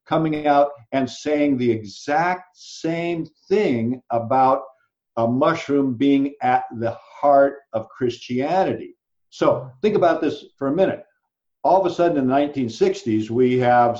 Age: 50-69